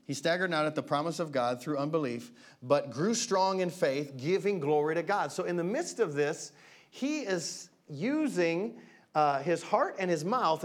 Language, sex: English, male